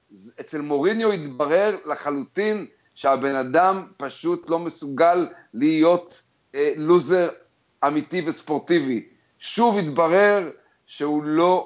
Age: 40-59